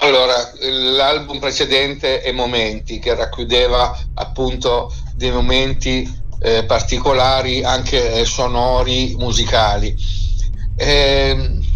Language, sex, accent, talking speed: Italian, male, native, 80 wpm